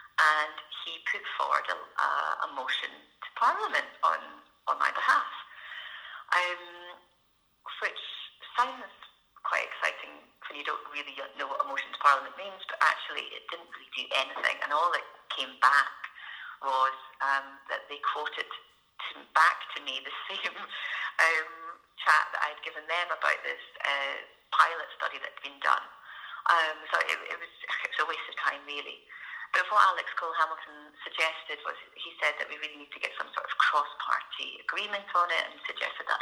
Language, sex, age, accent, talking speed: English, female, 30-49, British, 170 wpm